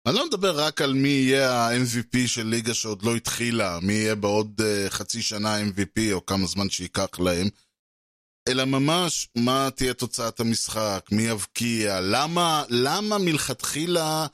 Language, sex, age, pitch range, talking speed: Hebrew, male, 20-39, 105-135 Hz, 145 wpm